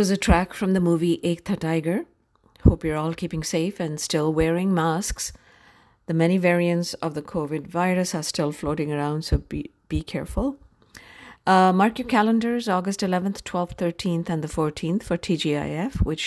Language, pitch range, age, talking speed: English, 150-175 Hz, 50-69, 170 wpm